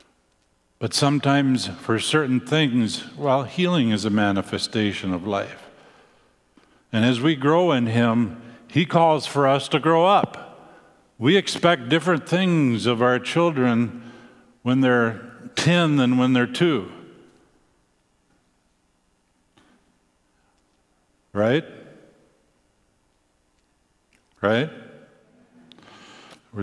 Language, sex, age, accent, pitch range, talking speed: English, male, 50-69, American, 90-125 Hz, 95 wpm